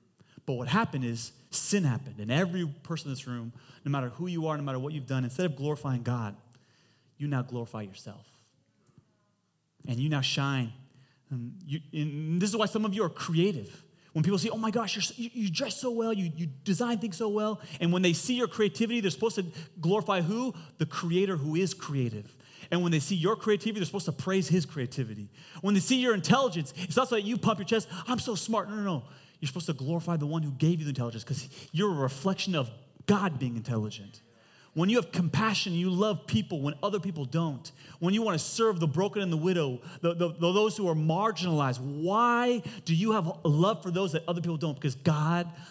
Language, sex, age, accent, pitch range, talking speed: English, male, 30-49, American, 135-190 Hz, 220 wpm